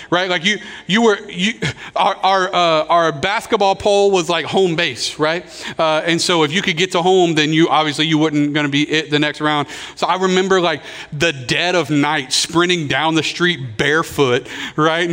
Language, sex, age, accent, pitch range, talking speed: English, male, 40-59, American, 140-185 Hz, 200 wpm